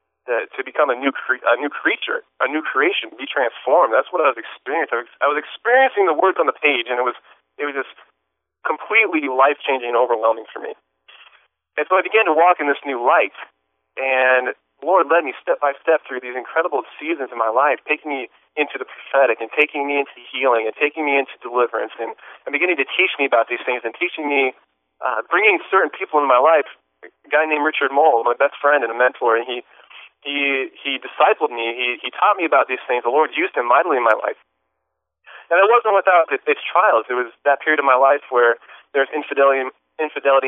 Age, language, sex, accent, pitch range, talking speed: 30-49, English, male, American, 115-145 Hz, 220 wpm